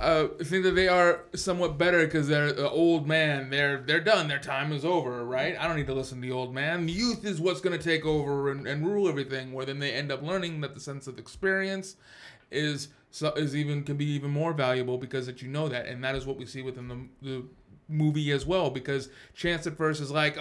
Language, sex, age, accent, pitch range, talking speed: English, male, 30-49, American, 135-165 Hz, 250 wpm